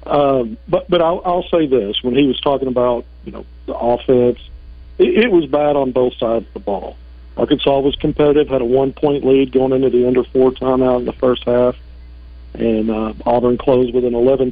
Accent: American